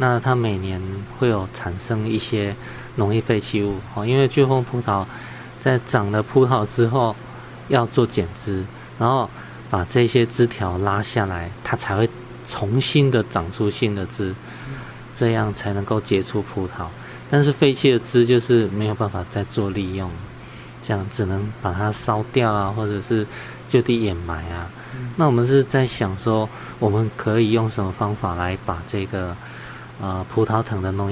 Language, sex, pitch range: Chinese, male, 100-125 Hz